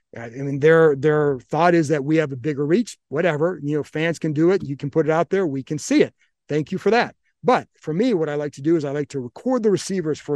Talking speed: 285 wpm